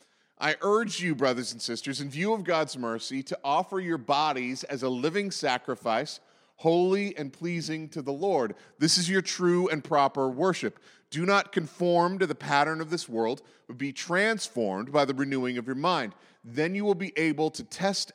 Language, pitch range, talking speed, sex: English, 145-185 Hz, 190 wpm, male